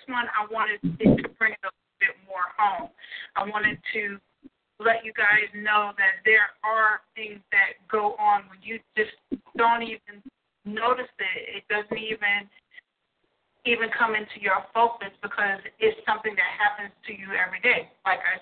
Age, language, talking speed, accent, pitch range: 40-59, English, 165 wpm, American, 205-235 Hz